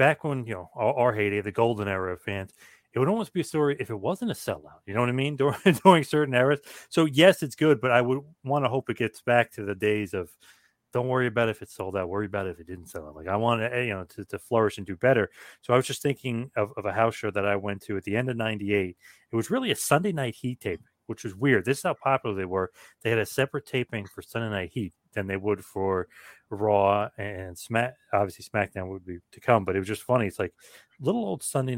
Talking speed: 270 wpm